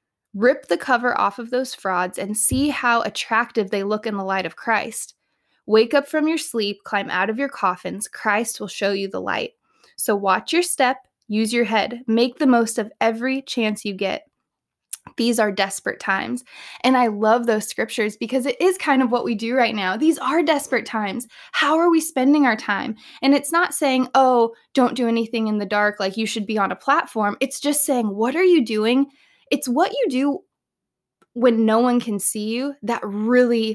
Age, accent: 20-39, American